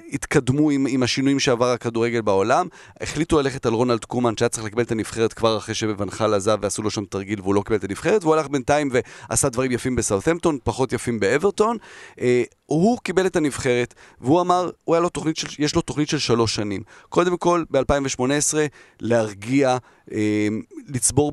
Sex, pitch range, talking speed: male, 115-145 Hz, 170 wpm